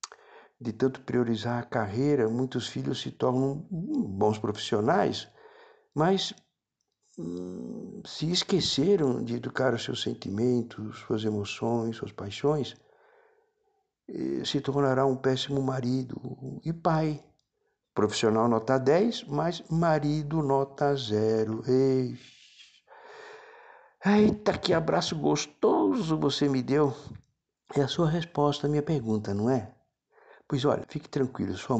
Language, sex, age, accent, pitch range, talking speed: Portuguese, male, 60-79, Brazilian, 110-155 Hz, 115 wpm